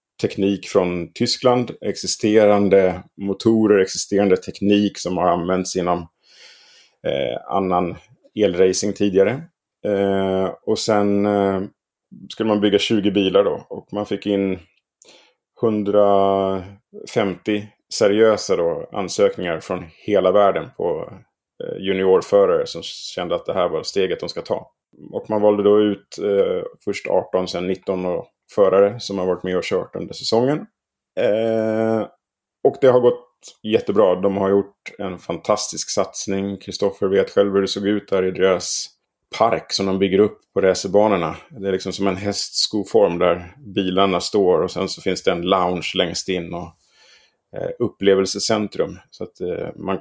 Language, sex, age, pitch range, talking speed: Swedish, male, 30-49, 95-115 Hz, 150 wpm